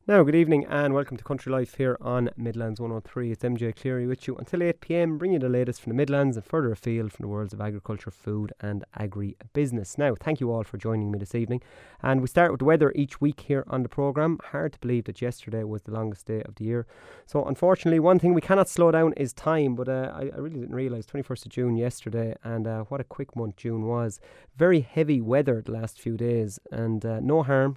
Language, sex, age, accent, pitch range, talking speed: English, male, 30-49, Irish, 115-140 Hz, 240 wpm